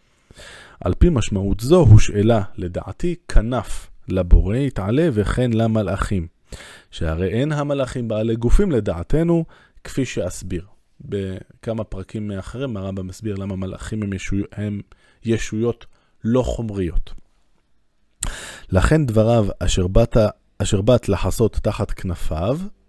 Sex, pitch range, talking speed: male, 95-120 Hz, 110 wpm